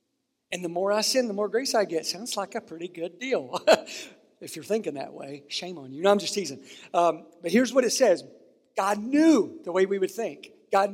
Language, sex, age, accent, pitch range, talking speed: English, male, 50-69, American, 180-230 Hz, 230 wpm